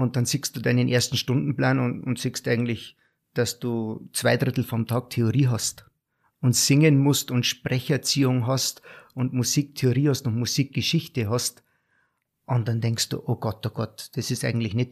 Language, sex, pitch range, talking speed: German, male, 115-130 Hz, 170 wpm